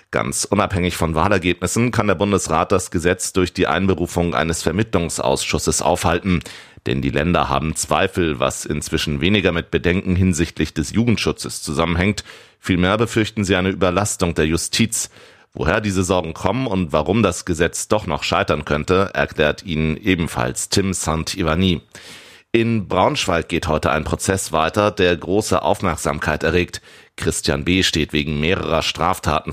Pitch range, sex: 80-95 Hz, male